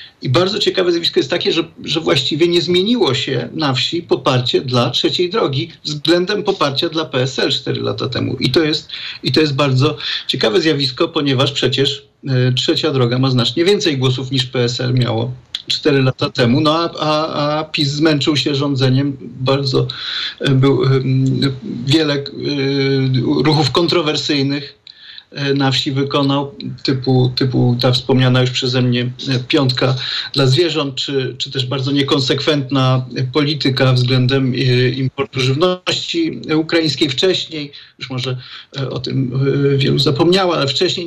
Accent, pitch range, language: native, 130-155 Hz, Polish